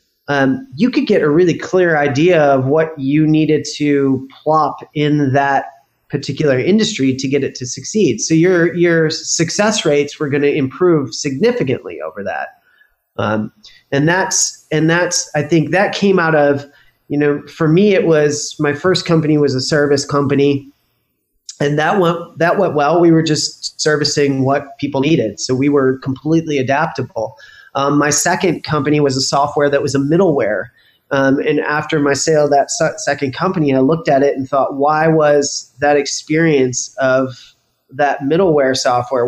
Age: 30-49